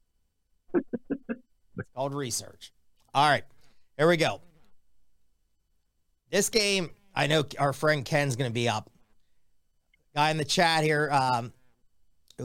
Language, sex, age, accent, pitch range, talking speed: English, male, 40-59, American, 105-150 Hz, 120 wpm